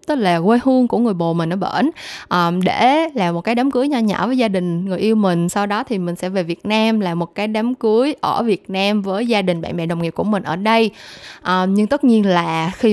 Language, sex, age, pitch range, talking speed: Vietnamese, female, 10-29, 190-255 Hz, 260 wpm